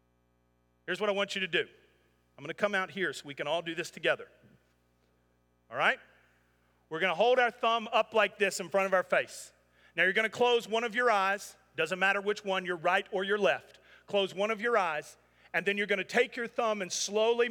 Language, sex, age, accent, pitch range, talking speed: English, male, 40-59, American, 145-225 Hz, 225 wpm